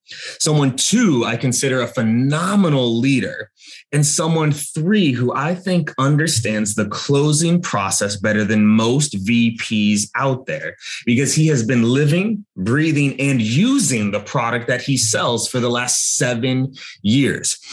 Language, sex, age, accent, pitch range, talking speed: English, male, 30-49, American, 120-165 Hz, 140 wpm